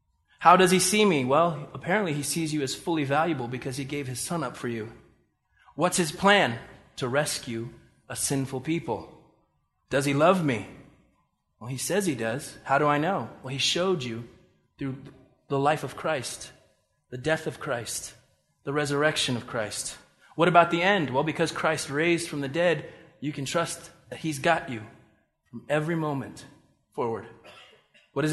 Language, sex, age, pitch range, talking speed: English, male, 20-39, 140-195 Hz, 175 wpm